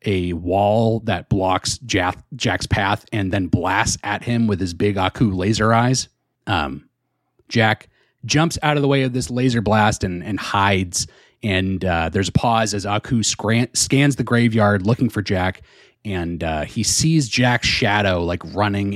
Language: English